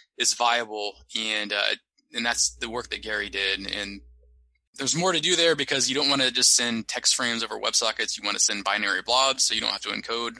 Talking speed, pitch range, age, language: 230 wpm, 100-120 Hz, 20-39, English